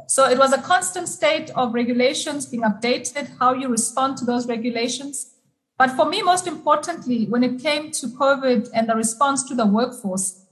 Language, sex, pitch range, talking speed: English, female, 215-255 Hz, 185 wpm